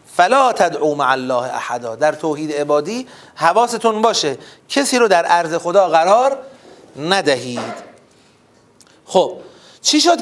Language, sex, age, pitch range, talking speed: Persian, male, 30-49, 145-220 Hz, 115 wpm